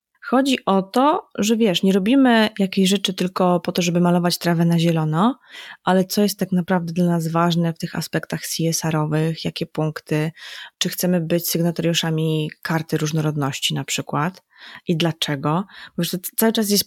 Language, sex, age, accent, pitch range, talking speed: Polish, female, 20-39, native, 165-210 Hz, 160 wpm